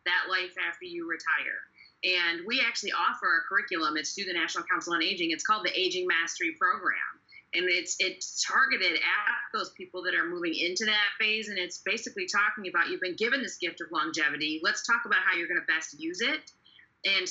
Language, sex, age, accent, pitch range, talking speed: English, female, 30-49, American, 190-270 Hz, 205 wpm